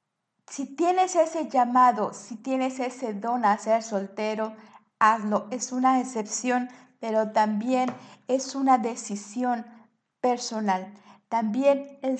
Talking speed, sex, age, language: 115 wpm, female, 50-69, Spanish